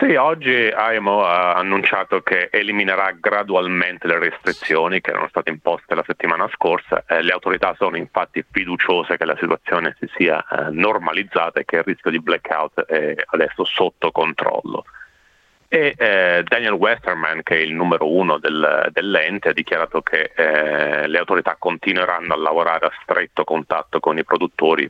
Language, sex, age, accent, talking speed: Italian, male, 30-49, native, 160 wpm